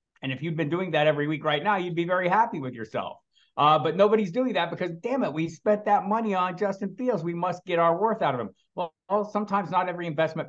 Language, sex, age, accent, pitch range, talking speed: English, male, 50-69, American, 135-180 Hz, 255 wpm